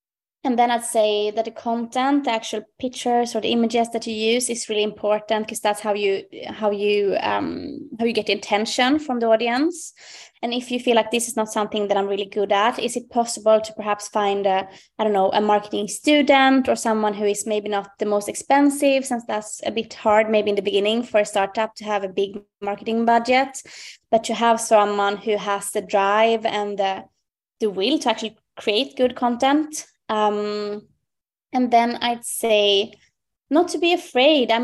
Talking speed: 195 wpm